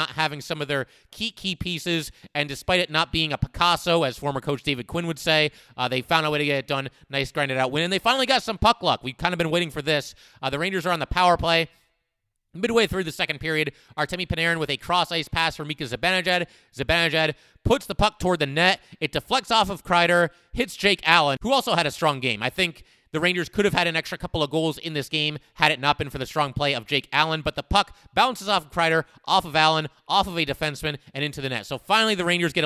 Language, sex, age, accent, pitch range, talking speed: English, male, 30-49, American, 145-175 Hz, 260 wpm